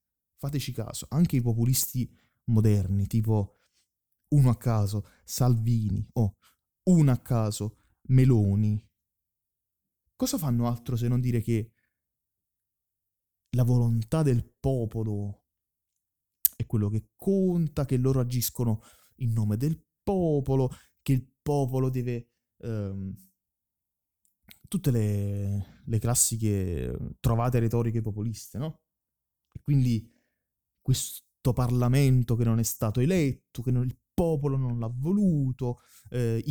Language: Italian